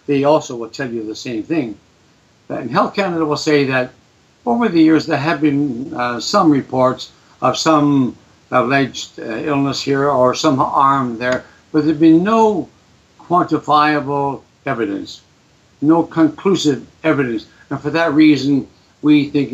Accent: American